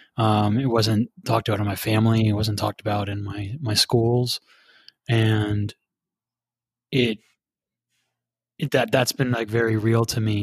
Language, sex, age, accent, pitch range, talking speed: English, male, 20-39, American, 110-125 Hz, 155 wpm